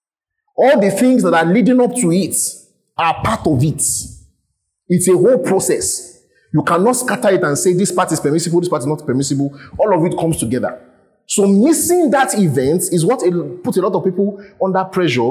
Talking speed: 195 wpm